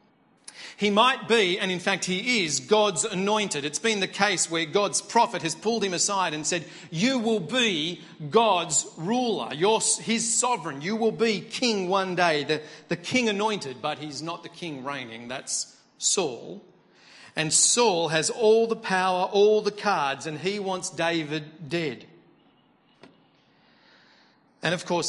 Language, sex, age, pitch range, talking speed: English, male, 40-59, 145-205 Hz, 155 wpm